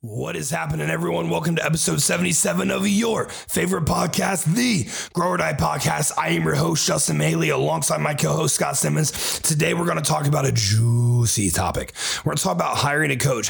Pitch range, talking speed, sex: 110-145 Hz, 185 wpm, male